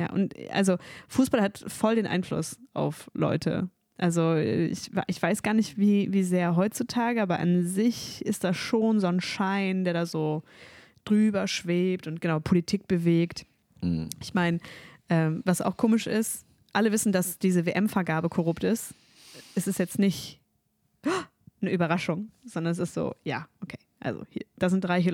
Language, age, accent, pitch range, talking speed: German, 20-39, German, 170-200 Hz, 160 wpm